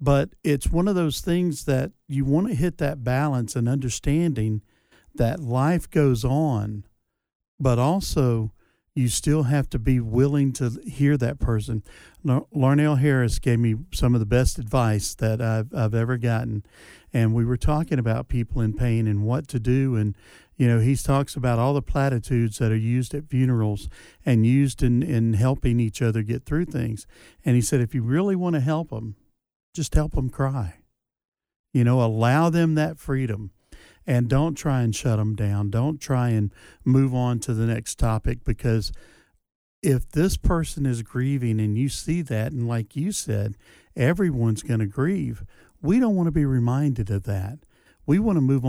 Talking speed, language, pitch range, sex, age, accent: 180 wpm, English, 110-140 Hz, male, 50-69, American